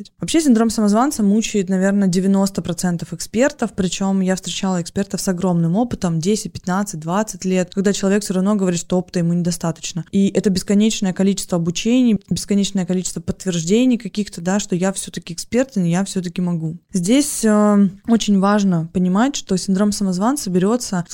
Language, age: Russian, 20-39